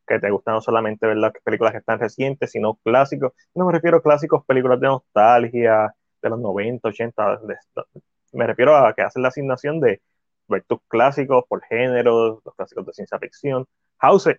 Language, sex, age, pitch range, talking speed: Spanish, male, 20-39, 110-160 Hz, 185 wpm